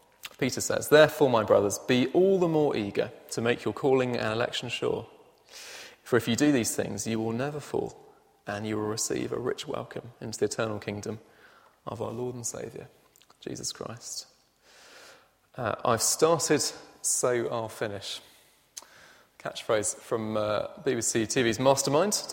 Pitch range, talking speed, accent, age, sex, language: 115-150 Hz, 155 wpm, British, 20-39, male, English